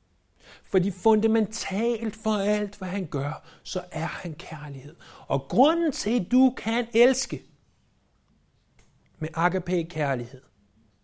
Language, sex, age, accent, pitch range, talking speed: Danish, male, 60-79, native, 130-200 Hz, 115 wpm